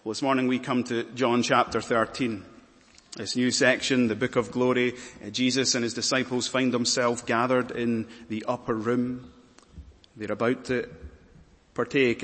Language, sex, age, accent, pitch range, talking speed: English, male, 30-49, British, 110-130 Hz, 150 wpm